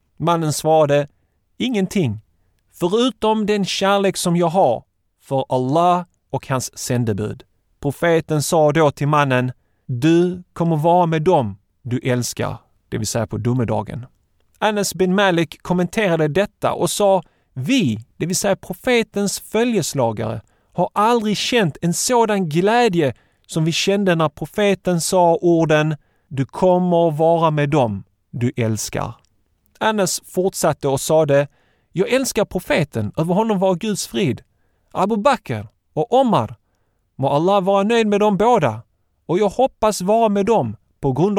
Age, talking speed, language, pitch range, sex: 30-49, 140 wpm, Swedish, 125-190 Hz, male